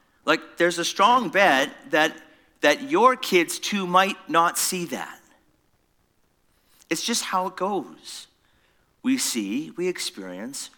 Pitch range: 175-250 Hz